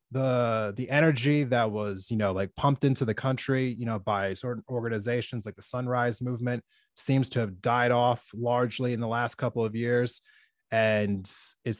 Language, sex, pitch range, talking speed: English, male, 105-125 Hz, 180 wpm